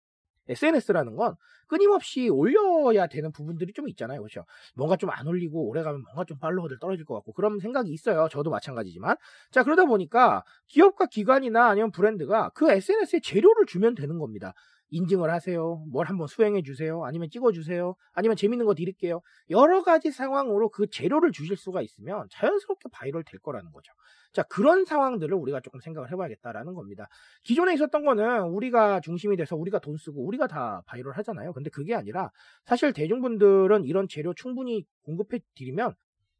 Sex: male